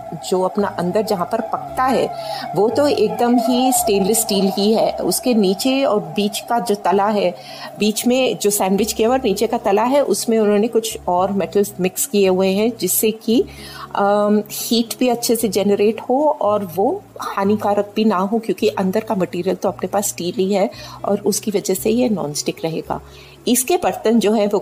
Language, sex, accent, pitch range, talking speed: Hindi, female, native, 185-230 Hz, 190 wpm